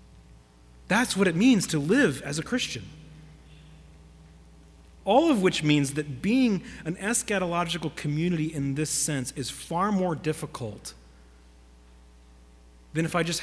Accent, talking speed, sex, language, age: American, 130 wpm, male, English, 30-49